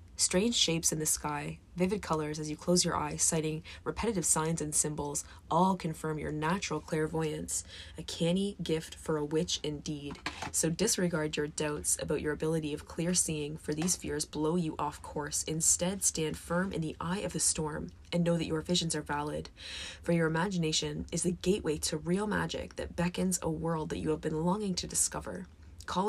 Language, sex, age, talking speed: English, female, 20-39, 190 wpm